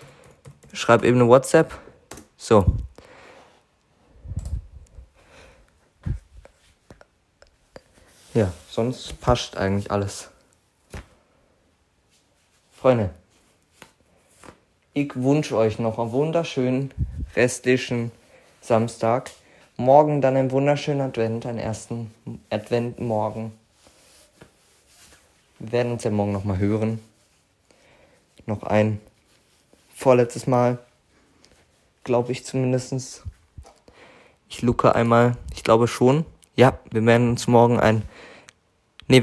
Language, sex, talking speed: German, male, 85 wpm